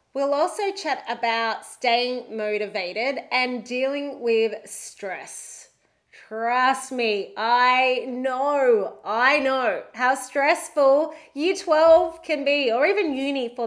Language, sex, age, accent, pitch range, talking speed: English, female, 30-49, Australian, 230-300 Hz, 115 wpm